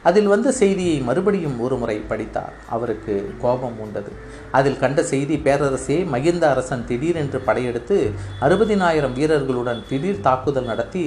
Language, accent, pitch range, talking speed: Tamil, native, 120-150 Hz, 125 wpm